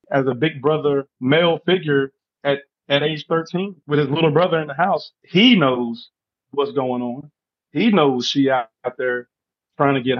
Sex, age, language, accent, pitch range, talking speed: male, 30-49, English, American, 135-160 Hz, 180 wpm